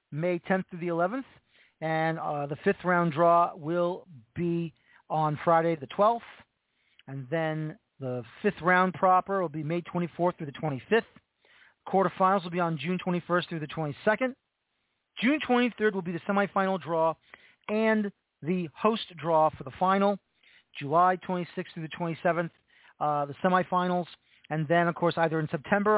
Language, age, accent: English, 40-59, American